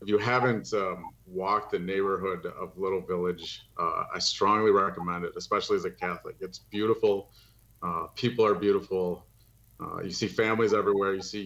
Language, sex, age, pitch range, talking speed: English, male, 30-49, 100-130 Hz, 170 wpm